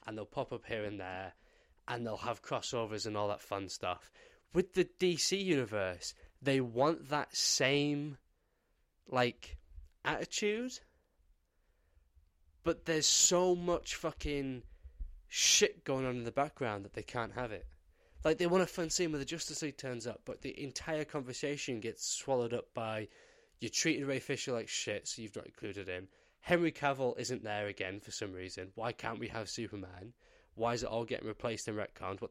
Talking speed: 175 wpm